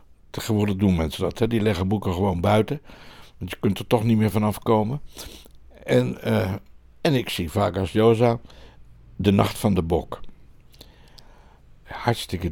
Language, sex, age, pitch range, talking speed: Dutch, male, 60-79, 85-110 Hz, 160 wpm